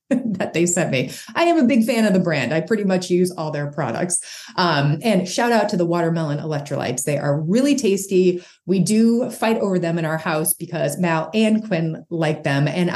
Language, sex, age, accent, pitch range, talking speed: English, female, 30-49, American, 170-245 Hz, 215 wpm